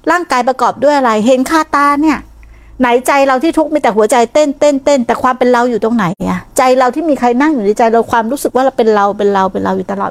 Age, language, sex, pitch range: 60-79, Thai, female, 220-285 Hz